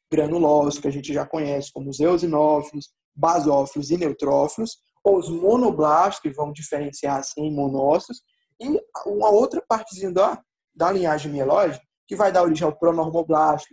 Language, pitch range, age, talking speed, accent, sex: Portuguese, 150-210 Hz, 20-39, 150 wpm, Brazilian, male